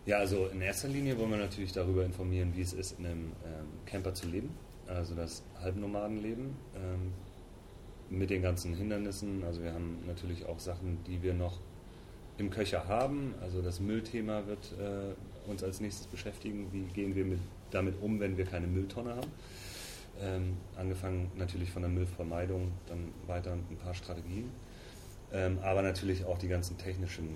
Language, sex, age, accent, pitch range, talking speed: German, male, 30-49, German, 85-100 Hz, 165 wpm